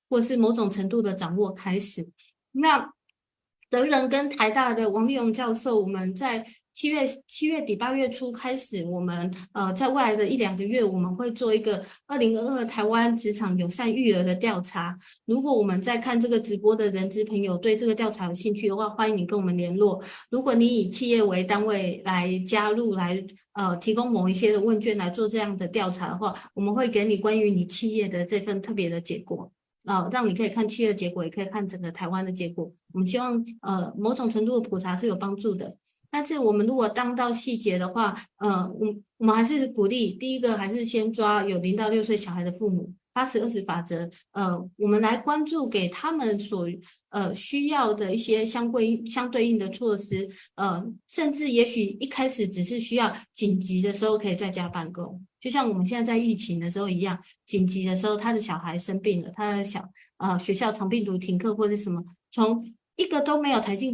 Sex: female